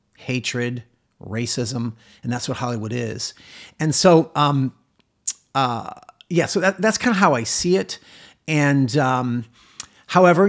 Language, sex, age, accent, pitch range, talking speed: English, male, 50-69, American, 120-155 Hz, 135 wpm